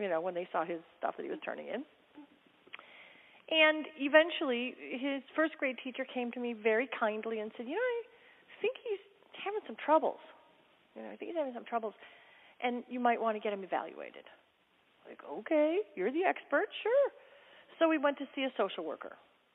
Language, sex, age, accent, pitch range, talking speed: English, female, 40-59, American, 210-350 Hz, 195 wpm